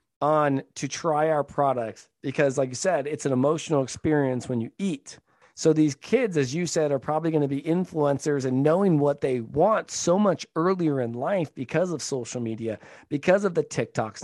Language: English